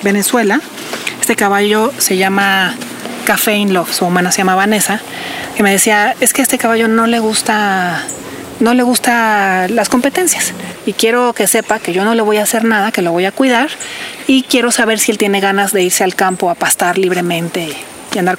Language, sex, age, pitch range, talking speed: Spanish, female, 30-49, 195-245 Hz, 195 wpm